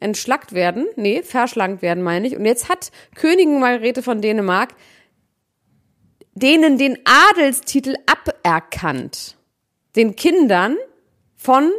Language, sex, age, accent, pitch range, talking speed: German, female, 30-49, German, 210-275 Hz, 105 wpm